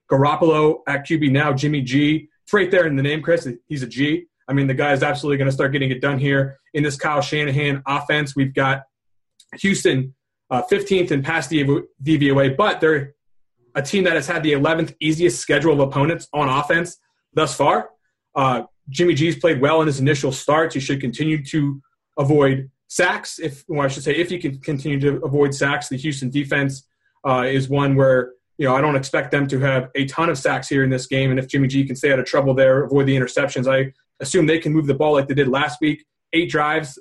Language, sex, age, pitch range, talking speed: English, male, 30-49, 135-155 Hz, 215 wpm